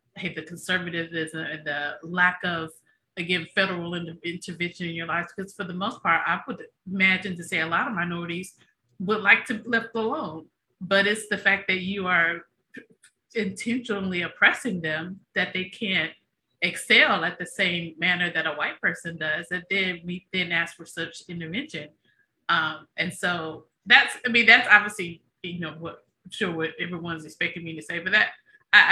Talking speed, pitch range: 180 wpm, 170-205 Hz